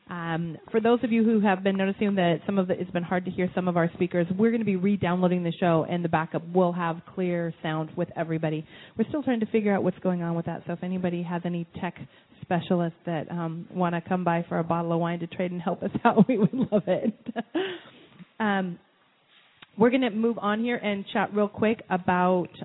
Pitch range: 175-205 Hz